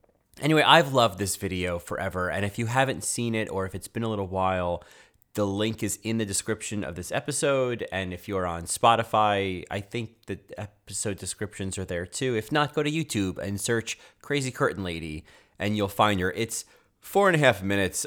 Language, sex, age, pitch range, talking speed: English, male, 30-49, 95-120 Hz, 200 wpm